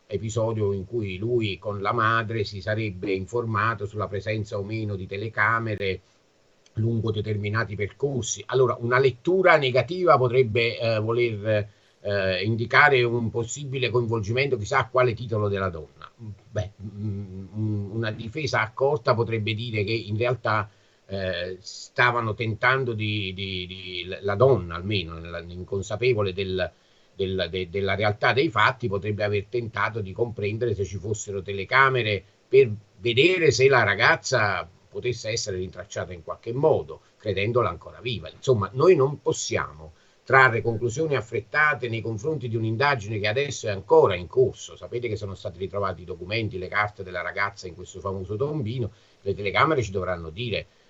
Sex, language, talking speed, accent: male, Italian, 145 wpm, native